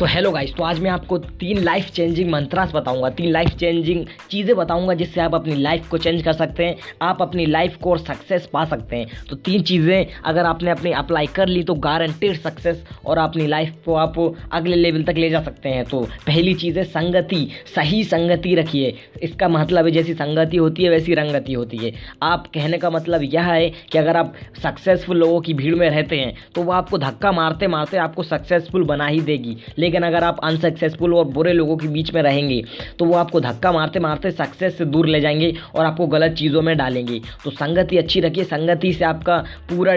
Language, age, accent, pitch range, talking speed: Hindi, 20-39, native, 150-175 Hz, 210 wpm